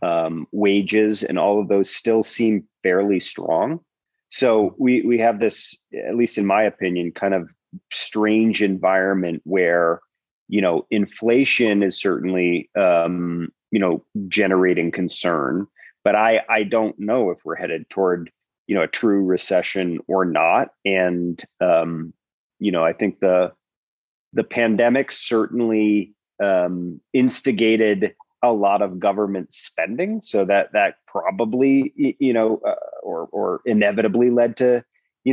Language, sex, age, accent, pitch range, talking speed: English, male, 30-49, American, 95-120 Hz, 140 wpm